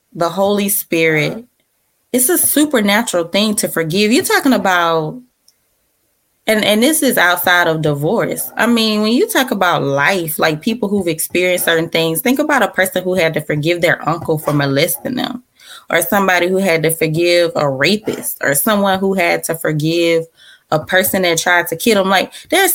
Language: English